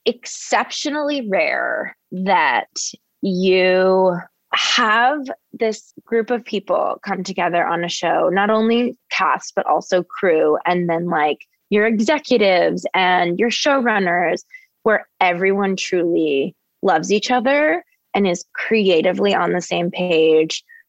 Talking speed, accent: 120 wpm, American